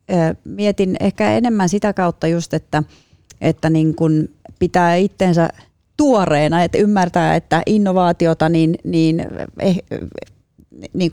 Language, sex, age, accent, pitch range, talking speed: Finnish, female, 30-49, native, 160-190 Hz, 110 wpm